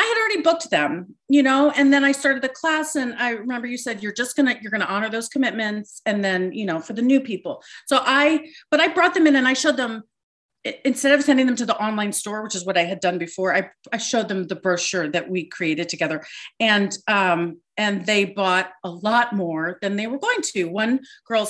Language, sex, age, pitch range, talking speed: English, female, 40-59, 205-280 Hz, 245 wpm